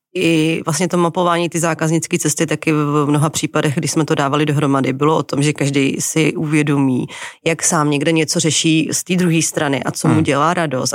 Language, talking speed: Czech, 205 wpm